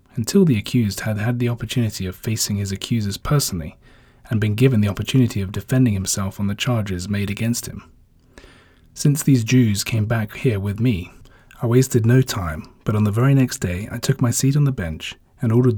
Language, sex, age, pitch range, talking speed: English, male, 30-49, 100-125 Hz, 200 wpm